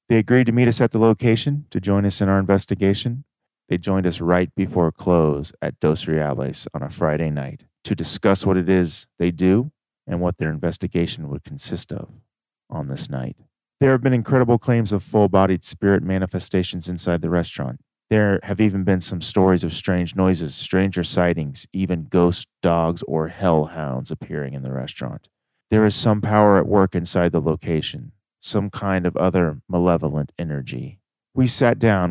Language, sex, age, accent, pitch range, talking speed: English, male, 30-49, American, 85-100 Hz, 175 wpm